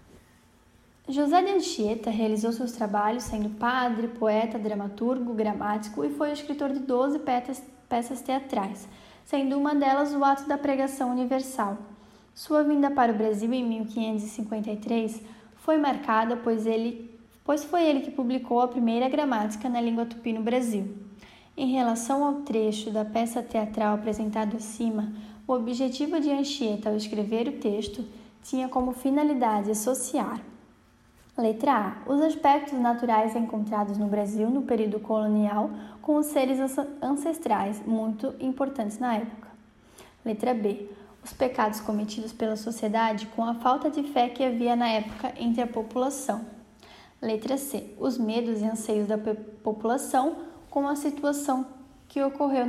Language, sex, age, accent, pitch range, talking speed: Portuguese, female, 10-29, Brazilian, 220-270 Hz, 140 wpm